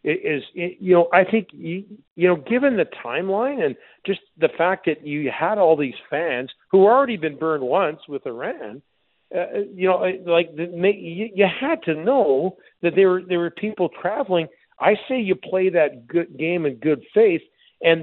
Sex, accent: male, American